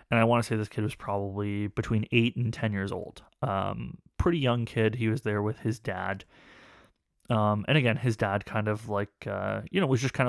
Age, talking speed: 20-39, 225 wpm